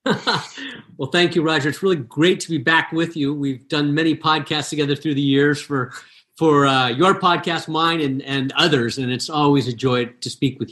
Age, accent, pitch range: 50-69, American, 135-155 Hz